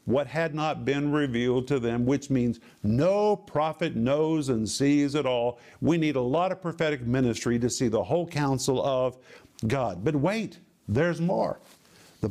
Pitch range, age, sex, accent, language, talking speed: 130-160 Hz, 50-69, male, American, English, 170 wpm